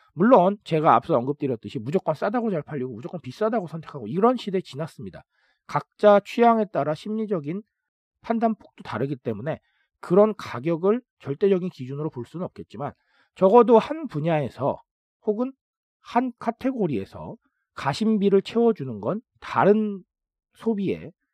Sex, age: male, 40-59